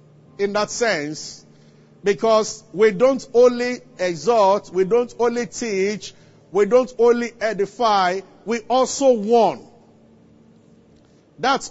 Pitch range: 180-245 Hz